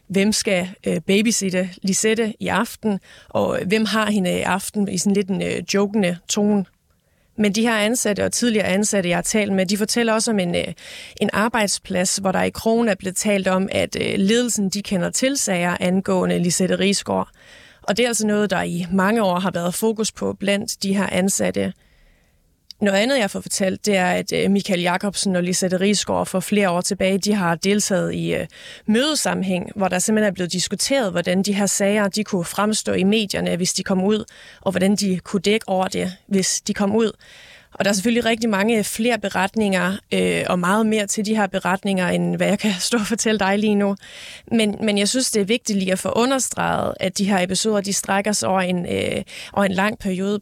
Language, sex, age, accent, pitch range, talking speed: Danish, female, 30-49, native, 185-210 Hz, 200 wpm